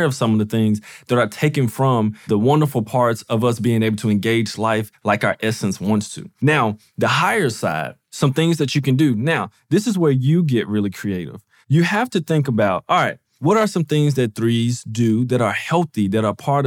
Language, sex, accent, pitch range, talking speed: English, male, American, 115-150 Hz, 225 wpm